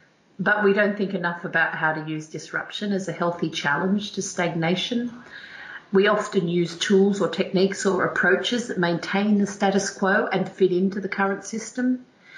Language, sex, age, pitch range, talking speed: English, female, 40-59, 165-205 Hz, 170 wpm